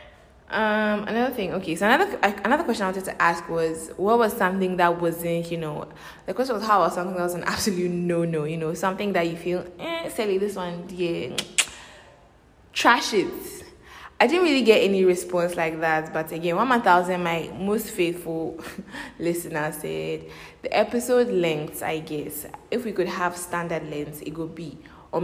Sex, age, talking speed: female, 20-39, 180 wpm